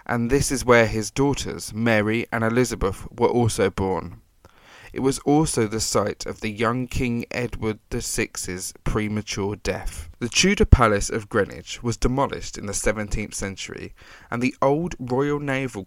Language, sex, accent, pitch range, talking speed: English, male, British, 100-130 Hz, 155 wpm